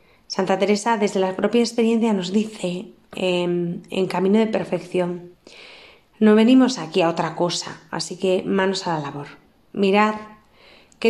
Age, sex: 30-49, female